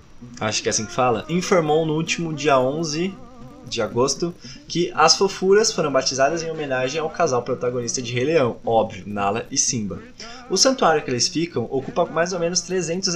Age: 20-39